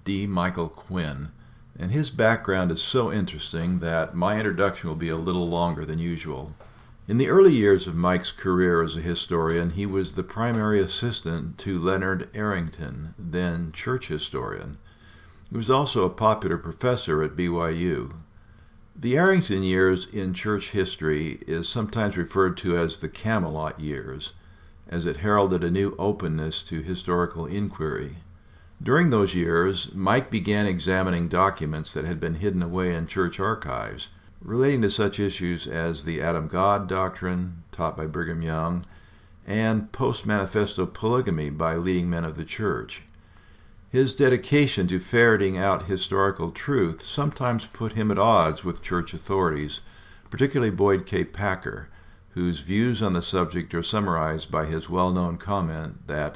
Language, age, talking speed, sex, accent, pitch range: English, 60-79, 145 wpm, male, American, 85-100 Hz